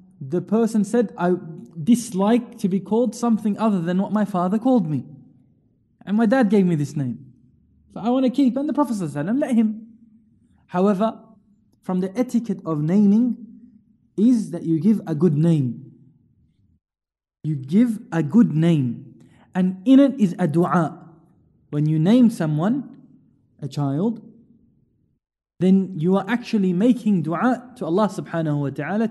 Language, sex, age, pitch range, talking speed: English, male, 20-39, 165-225 Hz, 155 wpm